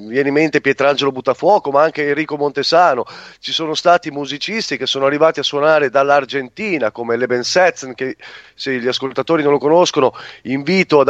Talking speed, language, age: 160 wpm, Italian, 30-49